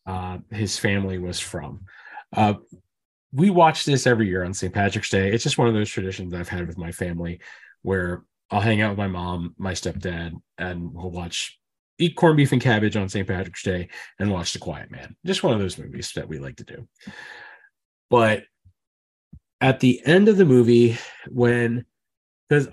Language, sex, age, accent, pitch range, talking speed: English, male, 30-49, American, 95-125 Hz, 185 wpm